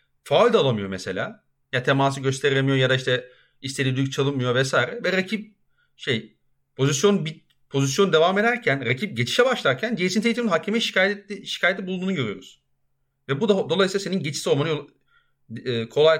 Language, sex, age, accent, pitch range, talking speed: Turkish, male, 40-59, native, 130-190 Hz, 145 wpm